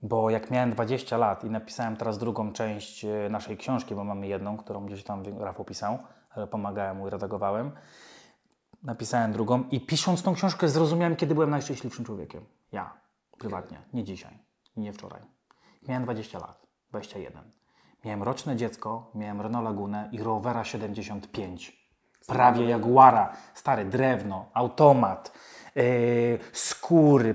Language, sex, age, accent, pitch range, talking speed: Polish, male, 30-49, native, 115-185 Hz, 135 wpm